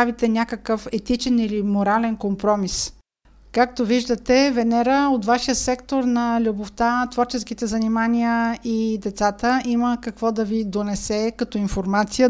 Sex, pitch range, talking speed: female, 215-250 Hz, 115 wpm